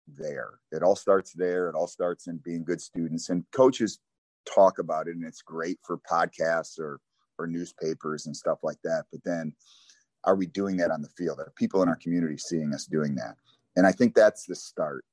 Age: 30-49